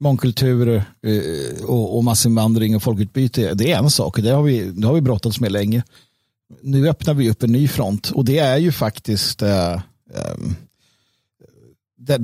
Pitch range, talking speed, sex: 115-140 Hz, 150 wpm, male